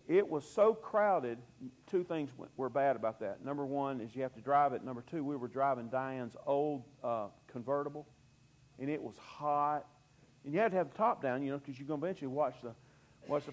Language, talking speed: English, 215 wpm